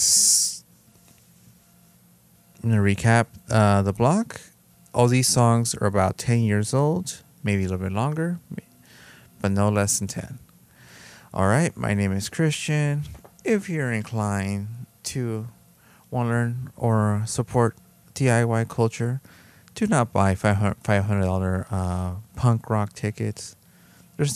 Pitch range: 95-125 Hz